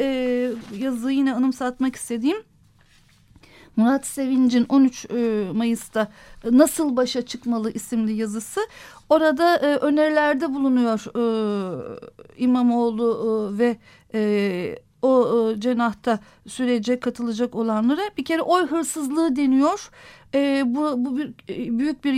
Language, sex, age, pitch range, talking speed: Turkish, female, 50-69, 230-285 Hz, 95 wpm